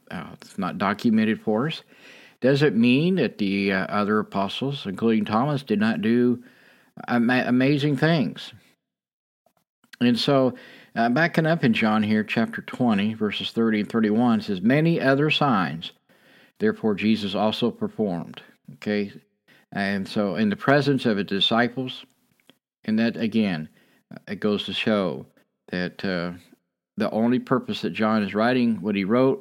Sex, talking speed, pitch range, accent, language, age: male, 145 wpm, 105-145 Hz, American, English, 50-69